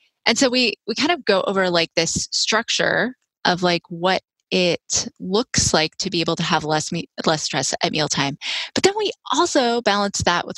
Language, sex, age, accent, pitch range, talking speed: English, female, 20-39, American, 170-255 Hz, 200 wpm